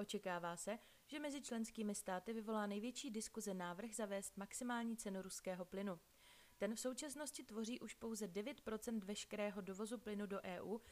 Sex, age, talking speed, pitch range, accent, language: female, 30-49, 150 wpm, 195-235 Hz, native, Czech